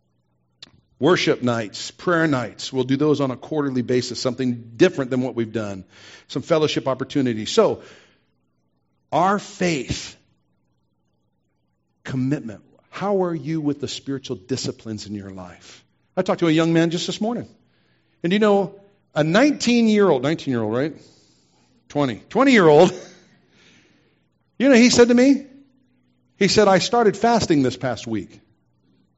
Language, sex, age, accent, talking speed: English, male, 50-69, American, 140 wpm